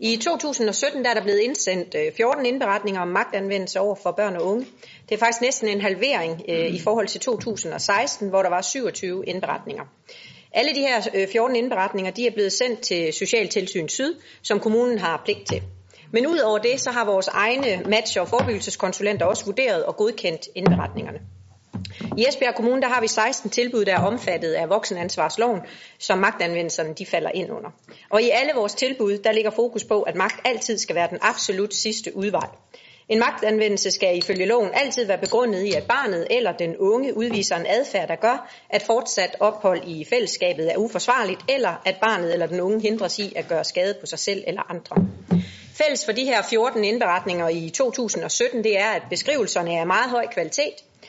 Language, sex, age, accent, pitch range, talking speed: Danish, female, 40-59, native, 185-240 Hz, 185 wpm